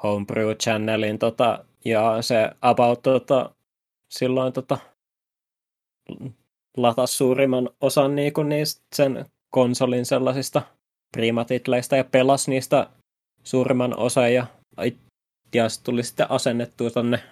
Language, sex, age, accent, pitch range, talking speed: Finnish, male, 20-39, native, 110-130 Hz, 100 wpm